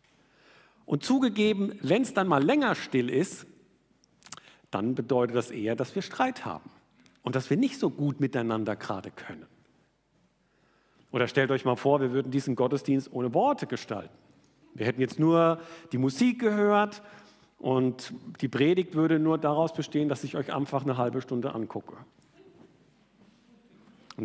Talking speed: 150 wpm